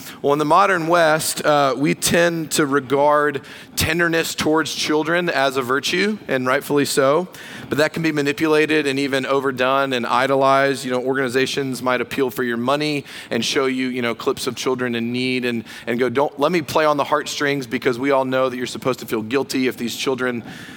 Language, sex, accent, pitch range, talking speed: English, male, American, 135-160 Hz, 200 wpm